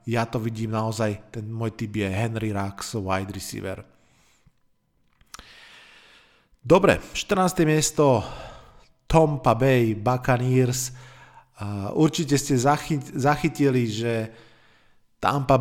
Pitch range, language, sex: 115-135 Hz, Slovak, male